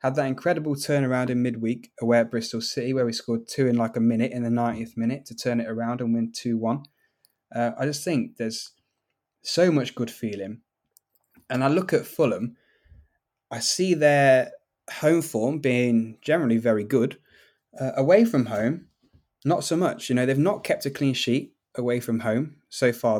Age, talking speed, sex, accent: 20-39, 185 wpm, male, British